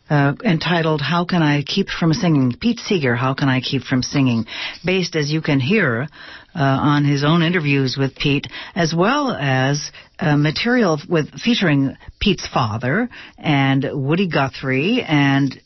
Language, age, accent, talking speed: English, 60-79, American, 155 wpm